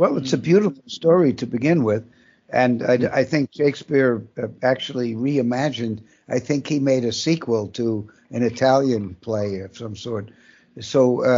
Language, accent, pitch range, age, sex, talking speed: English, American, 125-150 Hz, 60-79, male, 160 wpm